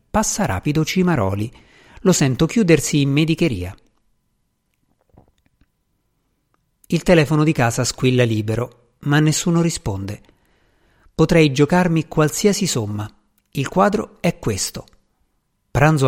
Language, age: Italian, 50-69